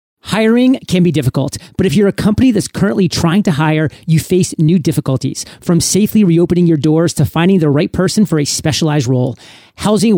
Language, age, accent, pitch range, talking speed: English, 30-49, American, 145-185 Hz, 195 wpm